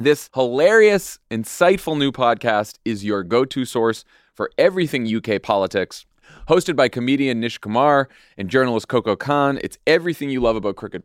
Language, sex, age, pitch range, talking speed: English, male, 30-49, 110-150 Hz, 150 wpm